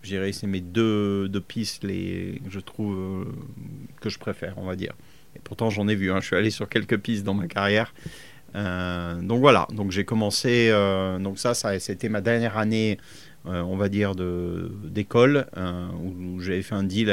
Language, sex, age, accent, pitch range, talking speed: French, male, 30-49, French, 95-110 Hz, 205 wpm